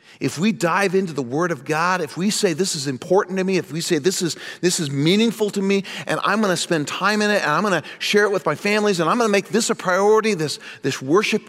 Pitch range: 155-210 Hz